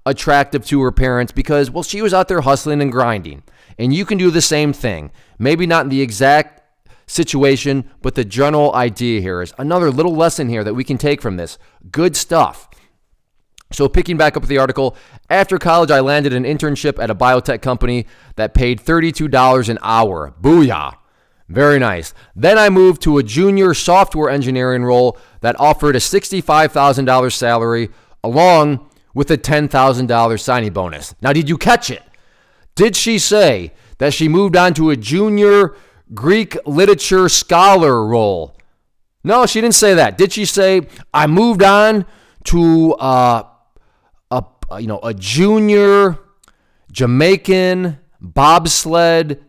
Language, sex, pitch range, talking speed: English, male, 125-185 Hz, 155 wpm